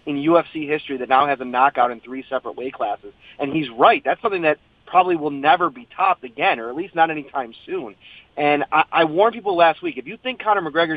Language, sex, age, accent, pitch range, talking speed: English, male, 30-49, American, 135-185 Hz, 235 wpm